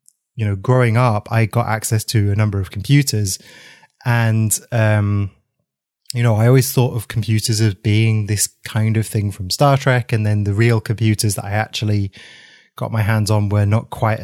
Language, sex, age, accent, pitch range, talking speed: English, male, 20-39, British, 105-125 Hz, 190 wpm